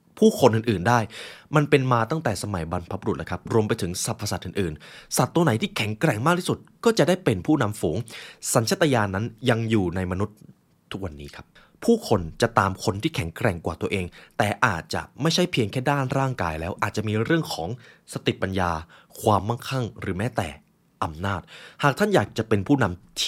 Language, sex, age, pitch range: Thai, male, 20-39, 95-140 Hz